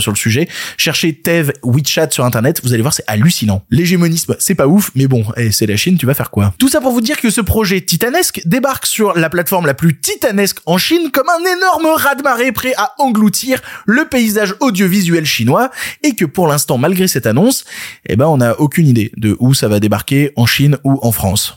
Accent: French